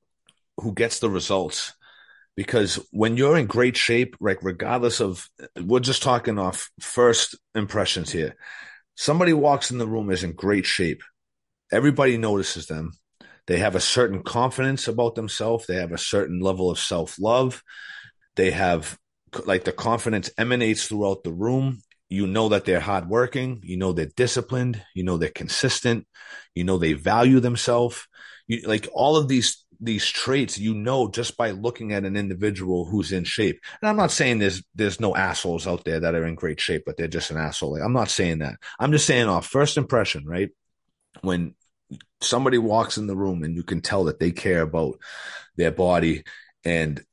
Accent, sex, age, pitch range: American, male, 30-49, 95-125 Hz